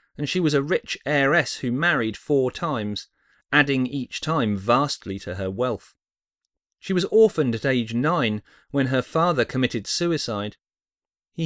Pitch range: 105-145 Hz